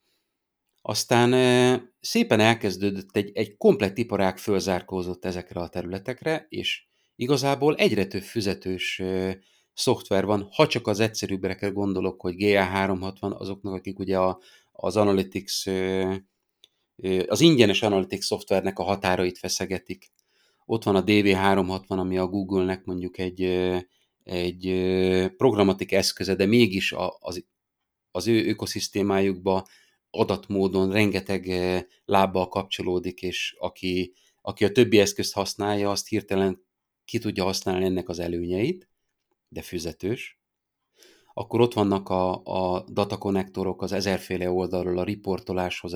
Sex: male